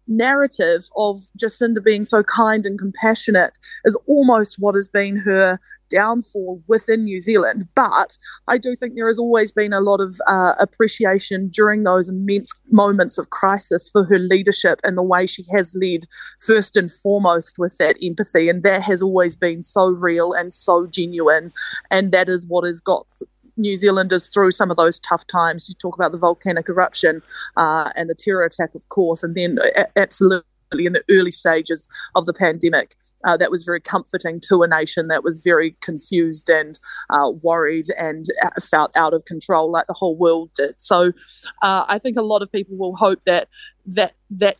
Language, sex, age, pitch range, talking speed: English, female, 30-49, 175-205 Hz, 185 wpm